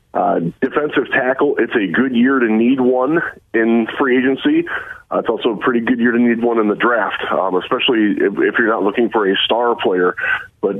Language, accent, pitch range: English, American, 110-155 Hz